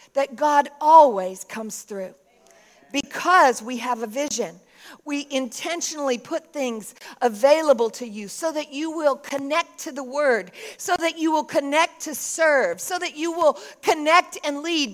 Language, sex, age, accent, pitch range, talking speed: English, female, 50-69, American, 230-300 Hz, 155 wpm